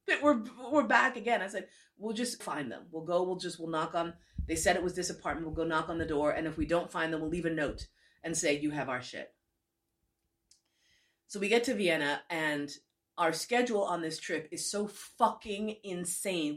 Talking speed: 215 wpm